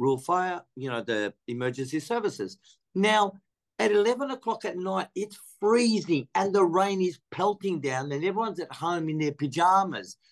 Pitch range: 160-215 Hz